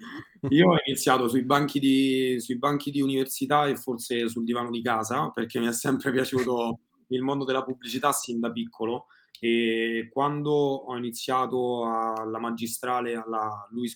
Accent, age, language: native, 20-39, Italian